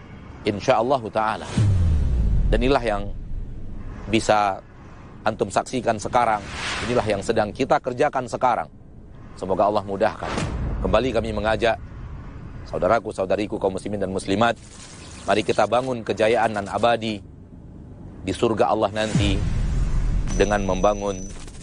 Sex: male